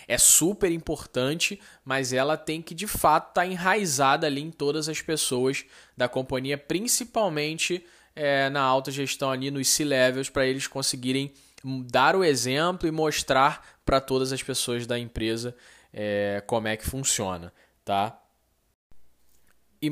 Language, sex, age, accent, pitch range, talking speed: Portuguese, male, 10-29, Brazilian, 120-150 Hz, 145 wpm